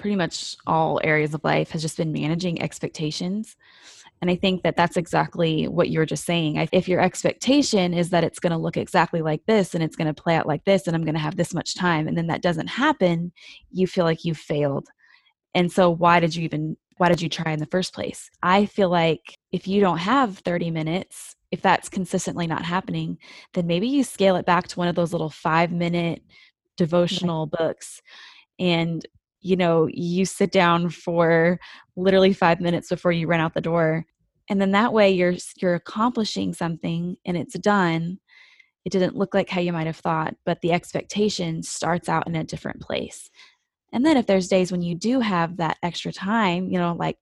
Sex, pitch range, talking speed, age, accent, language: female, 160-185 Hz, 205 wpm, 20-39, American, English